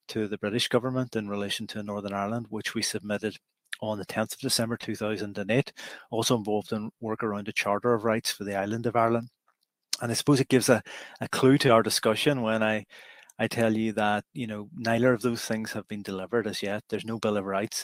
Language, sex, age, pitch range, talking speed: English, male, 30-49, 105-120 Hz, 210 wpm